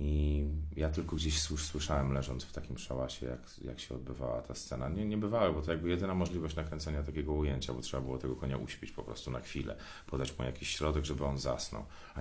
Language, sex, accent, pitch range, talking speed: Polish, male, native, 75-105 Hz, 210 wpm